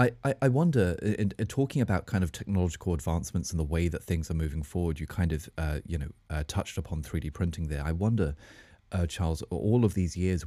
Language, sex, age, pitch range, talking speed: English, male, 30-49, 80-95 Hz, 230 wpm